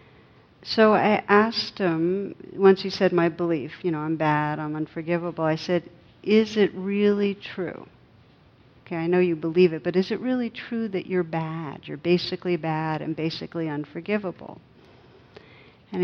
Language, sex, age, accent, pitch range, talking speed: English, female, 60-79, American, 160-205 Hz, 155 wpm